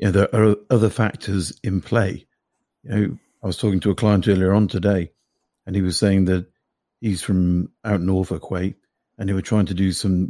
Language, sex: English, male